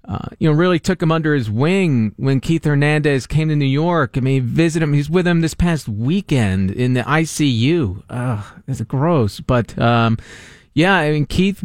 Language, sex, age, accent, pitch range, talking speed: English, male, 40-59, American, 125-175 Hz, 190 wpm